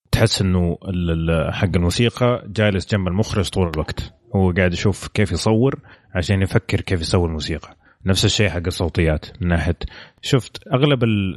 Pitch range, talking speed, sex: 90-110 Hz, 150 wpm, male